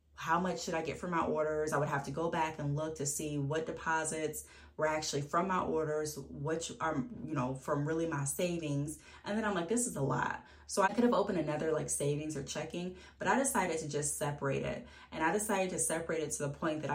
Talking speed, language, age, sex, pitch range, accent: 240 wpm, English, 10-29, female, 145-170 Hz, American